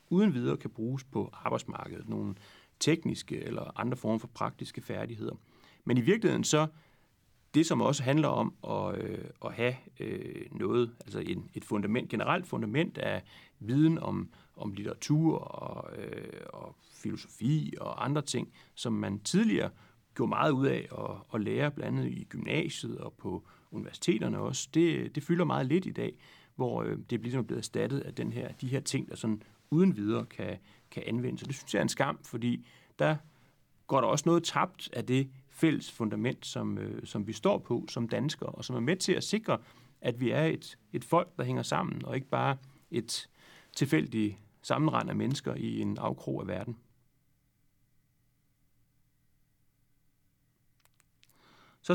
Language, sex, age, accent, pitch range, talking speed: Danish, male, 40-59, native, 115-150 Hz, 165 wpm